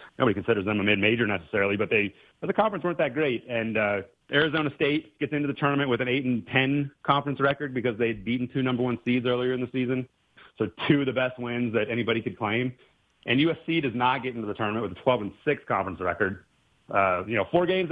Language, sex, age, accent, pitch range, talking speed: English, male, 30-49, American, 100-130 Hz, 235 wpm